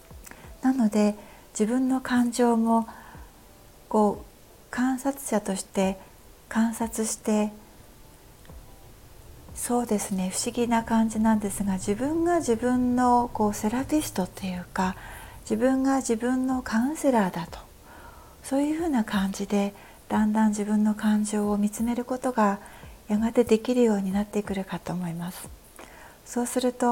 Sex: female